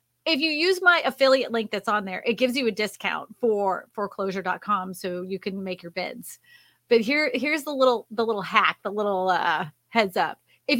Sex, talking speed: female, 200 wpm